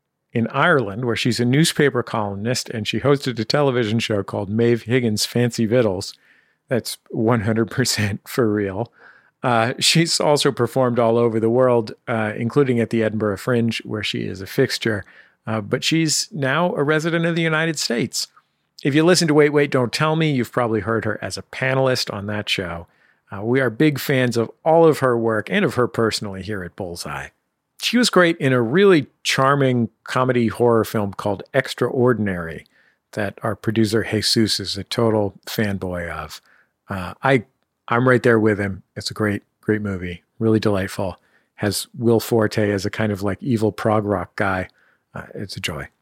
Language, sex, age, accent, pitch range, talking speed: English, male, 40-59, American, 105-135 Hz, 180 wpm